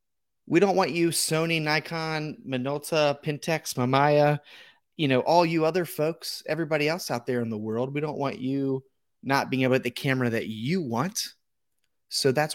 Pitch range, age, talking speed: 120-150 Hz, 30-49, 180 wpm